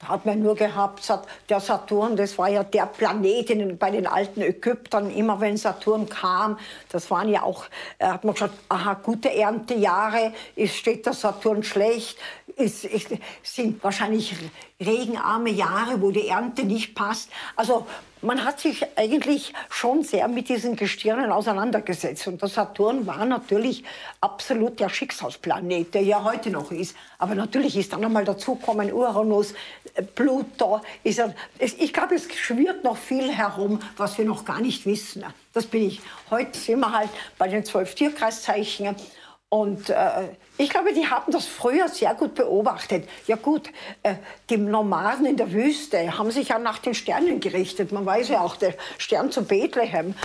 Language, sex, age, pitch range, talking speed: German, female, 60-79, 205-250 Hz, 160 wpm